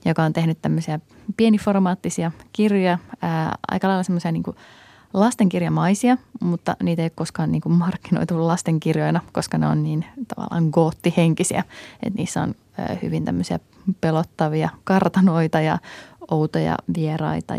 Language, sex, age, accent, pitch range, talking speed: Finnish, female, 20-39, native, 160-190 Hz, 125 wpm